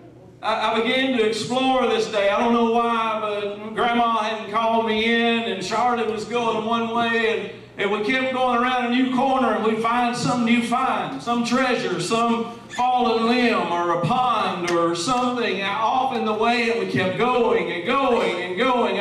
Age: 40-59